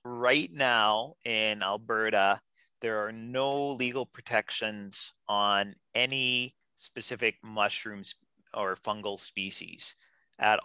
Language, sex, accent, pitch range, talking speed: English, male, American, 105-125 Hz, 95 wpm